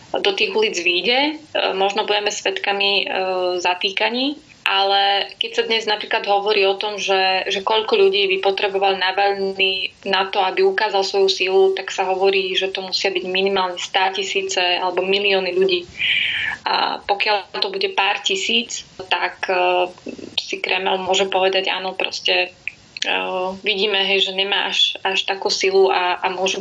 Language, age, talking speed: Slovak, 20-39, 150 wpm